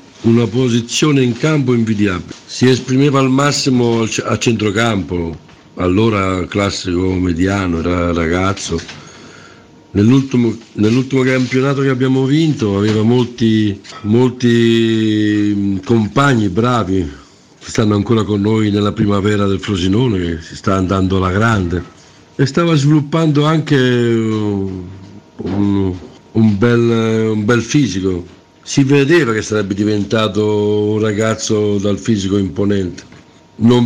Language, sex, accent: Italian, male, native